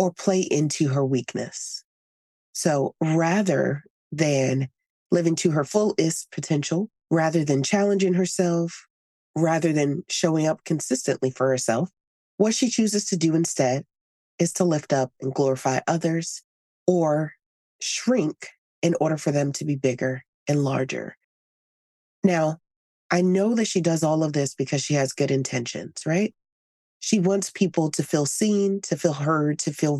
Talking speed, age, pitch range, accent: 150 wpm, 30-49, 140-180 Hz, American